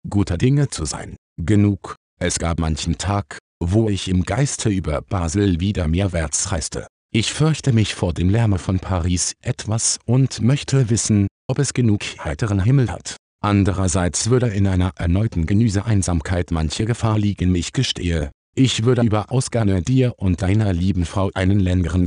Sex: male